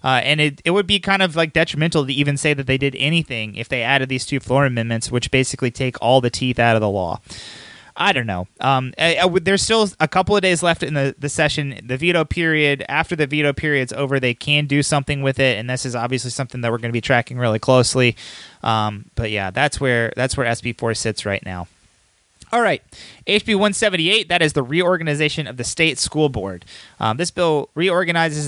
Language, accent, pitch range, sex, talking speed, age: English, American, 120-155 Hz, male, 225 wpm, 30-49